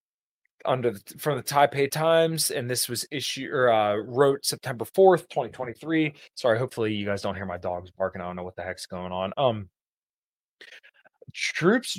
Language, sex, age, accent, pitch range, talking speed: English, male, 20-39, American, 105-135 Hz, 170 wpm